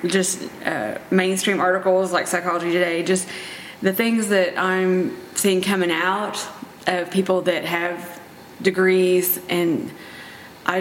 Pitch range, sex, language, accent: 175-190 Hz, female, English, American